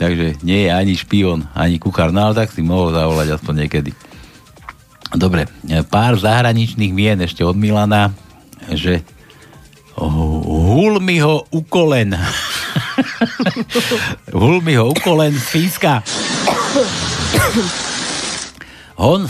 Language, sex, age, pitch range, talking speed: Slovak, male, 60-79, 100-170 Hz, 100 wpm